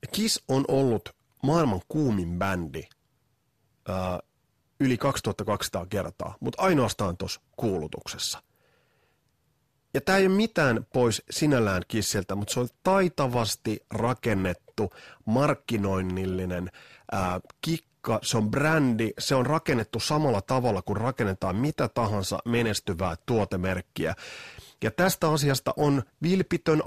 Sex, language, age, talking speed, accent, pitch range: male, Finnish, 30-49, 110 wpm, native, 95-135 Hz